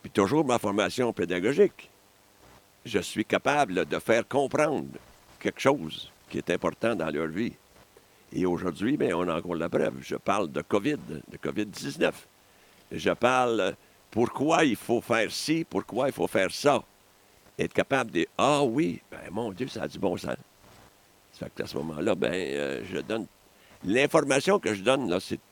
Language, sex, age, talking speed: French, male, 60-79, 175 wpm